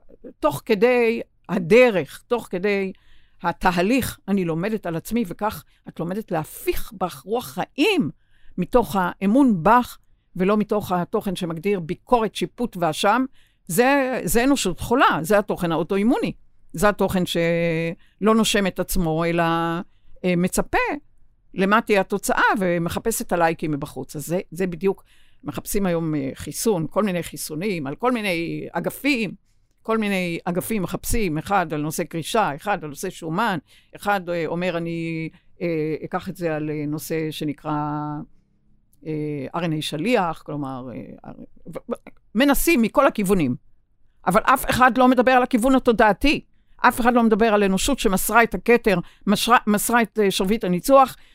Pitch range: 165-225 Hz